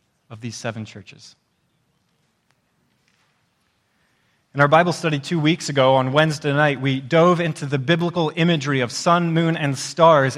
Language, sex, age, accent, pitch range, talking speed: English, male, 30-49, American, 130-165 Hz, 145 wpm